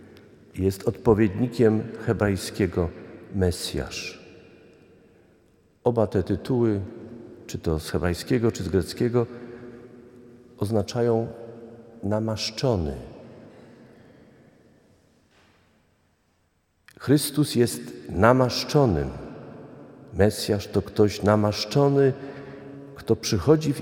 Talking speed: 65 wpm